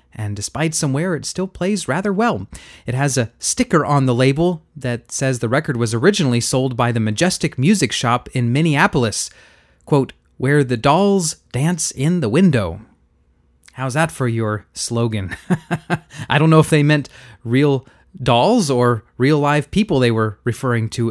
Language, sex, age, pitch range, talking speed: English, male, 30-49, 115-160 Hz, 170 wpm